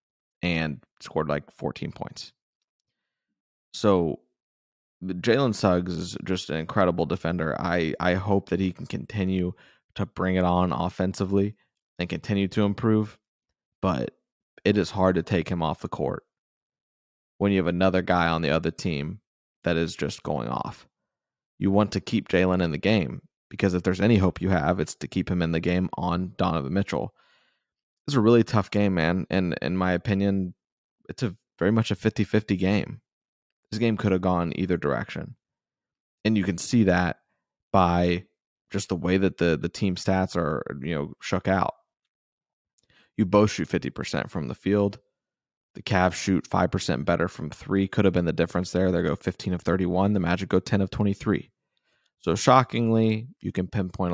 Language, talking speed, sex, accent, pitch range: English, 175 wpm, male, American, 85-100 Hz